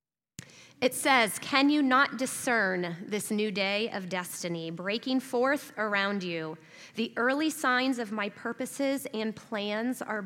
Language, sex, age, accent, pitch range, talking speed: English, female, 30-49, American, 180-240 Hz, 140 wpm